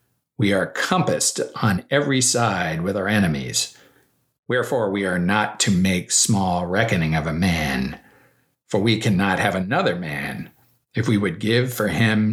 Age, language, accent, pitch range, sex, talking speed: 50-69, English, American, 100-125 Hz, male, 155 wpm